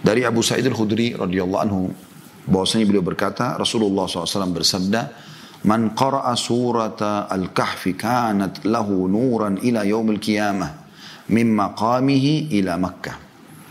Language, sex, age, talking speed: Indonesian, male, 40-59, 115 wpm